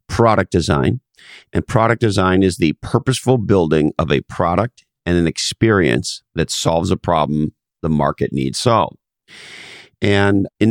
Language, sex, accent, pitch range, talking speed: English, male, American, 80-100 Hz, 140 wpm